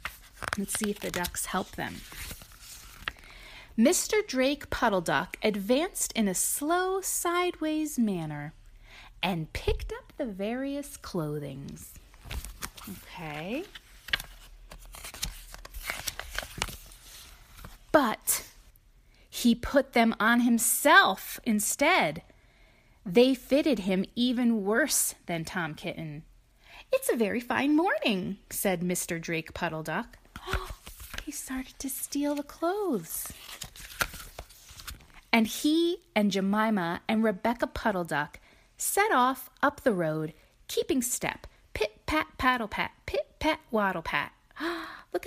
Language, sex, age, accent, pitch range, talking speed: English, female, 30-49, American, 185-280 Hz, 105 wpm